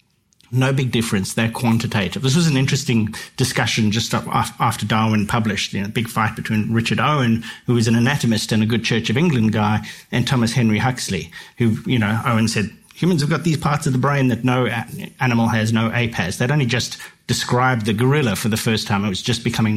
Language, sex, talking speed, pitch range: English, male, 215 wpm, 110-135 Hz